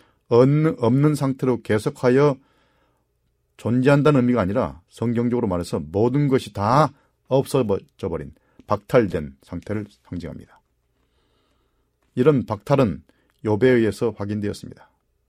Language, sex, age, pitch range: Korean, male, 40-59, 100-125 Hz